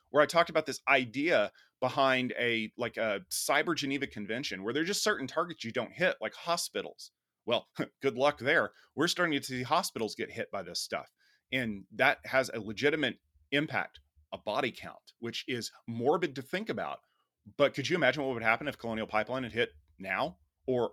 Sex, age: male, 30-49